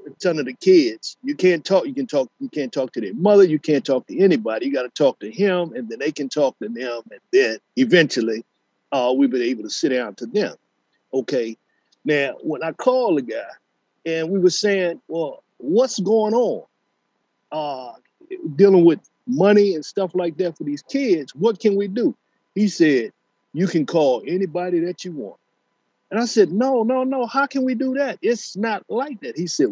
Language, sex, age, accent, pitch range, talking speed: English, male, 50-69, American, 160-265 Hz, 205 wpm